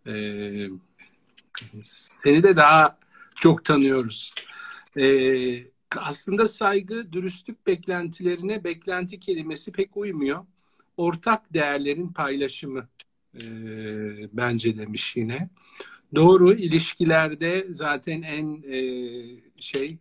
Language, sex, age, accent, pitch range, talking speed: Turkish, male, 50-69, native, 120-170 Hz, 70 wpm